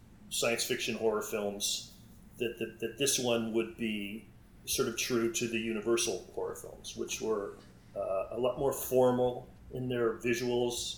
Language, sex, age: English, male, 40-59